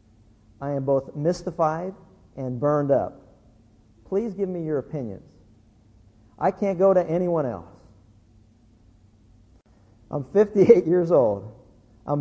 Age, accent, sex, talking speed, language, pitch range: 50-69, American, male, 115 wpm, English, 115-180 Hz